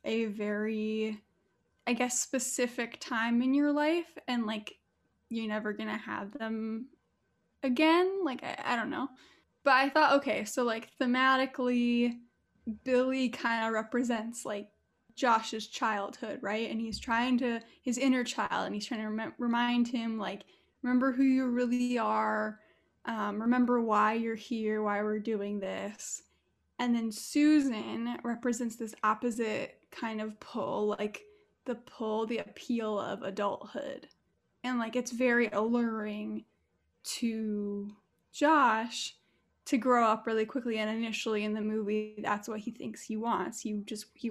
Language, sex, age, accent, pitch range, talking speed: English, female, 10-29, American, 215-250 Hz, 145 wpm